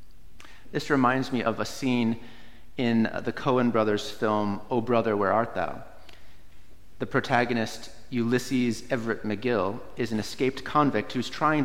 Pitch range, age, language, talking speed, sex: 110-135 Hz, 30-49, English, 140 wpm, male